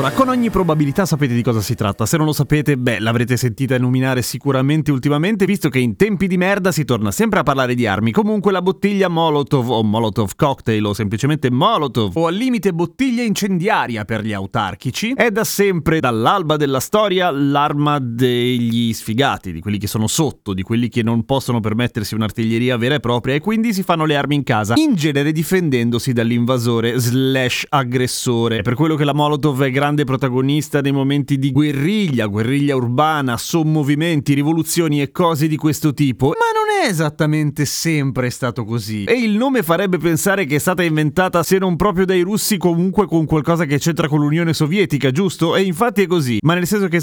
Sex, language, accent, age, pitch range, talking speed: male, Italian, native, 30-49, 120-180 Hz, 185 wpm